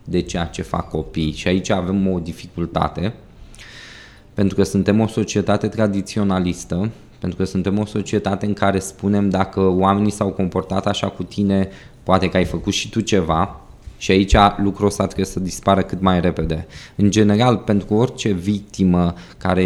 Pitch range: 95-110 Hz